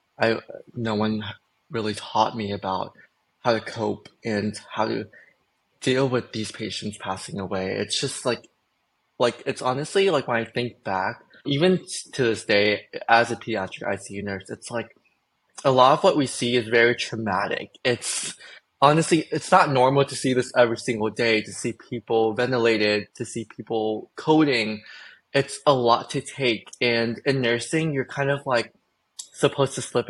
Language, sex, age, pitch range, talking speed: English, male, 20-39, 105-125 Hz, 165 wpm